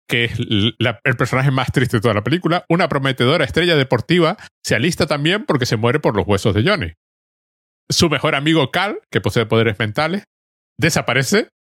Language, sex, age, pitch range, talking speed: Spanish, male, 30-49, 115-150 Hz, 175 wpm